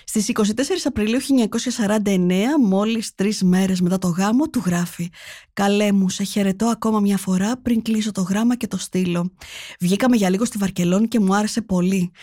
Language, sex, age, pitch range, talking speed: Greek, female, 20-39, 185-225 Hz, 170 wpm